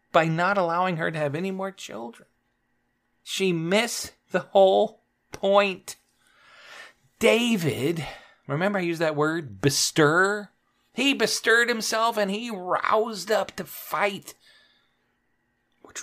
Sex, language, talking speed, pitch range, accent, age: male, English, 115 wpm, 140-215 Hz, American, 40-59